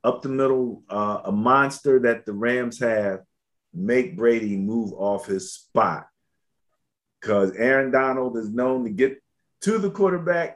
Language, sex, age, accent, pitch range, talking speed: English, male, 50-69, American, 105-135 Hz, 150 wpm